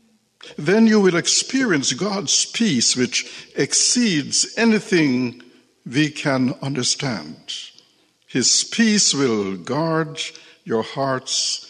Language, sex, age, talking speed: English, male, 60-79, 90 wpm